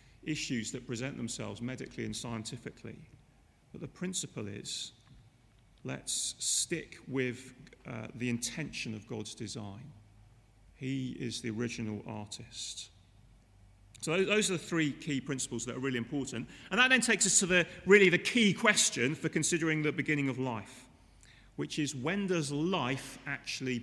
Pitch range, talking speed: 120-170 Hz, 150 wpm